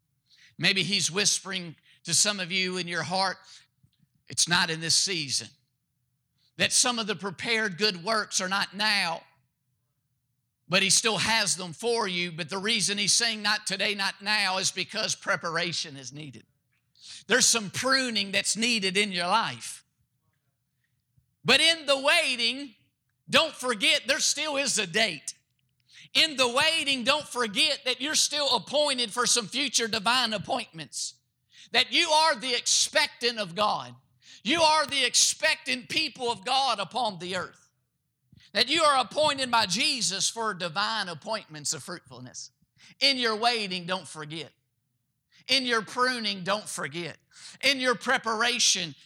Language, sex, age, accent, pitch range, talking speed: English, male, 50-69, American, 155-240 Hz, 145 wpm